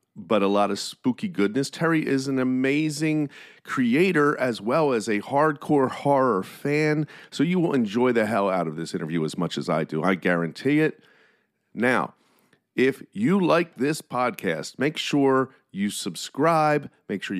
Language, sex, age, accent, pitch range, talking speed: English, male, 40-59, American, 105-145 Hz, 165 wpm